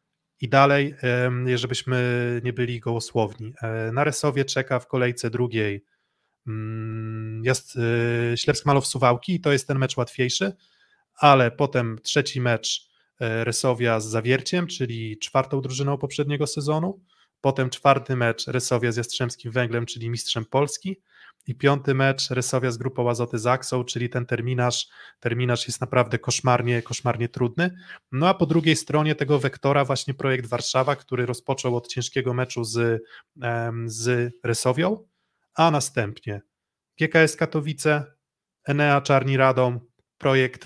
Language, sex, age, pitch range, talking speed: Polish, male, 20-39, 120-140 Hz, 125 wpm